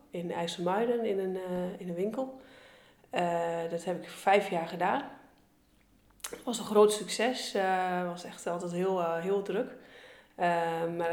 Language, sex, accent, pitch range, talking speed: Dutch, female, Dutch, 160-185 Hz, 160 wpm